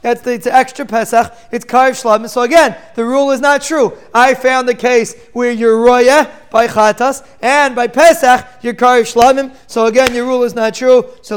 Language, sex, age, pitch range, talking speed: English, male, 20-39, 220-260 Hz, 195 wpm